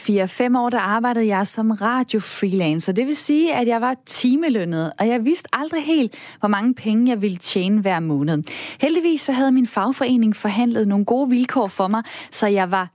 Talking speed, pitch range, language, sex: 195 wpm, 200-270 Hz, Danish, female